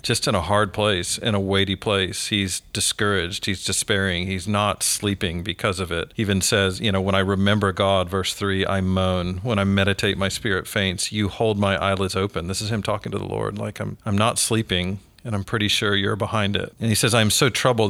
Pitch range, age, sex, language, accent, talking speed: 95-110 Hz, 40-59, male, English, American, 225 wpm